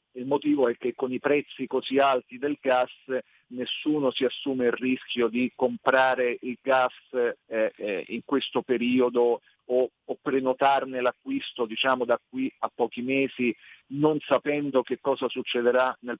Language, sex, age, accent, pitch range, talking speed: Italian, male, 40-59, native, 120-140 Hz, 150 wpm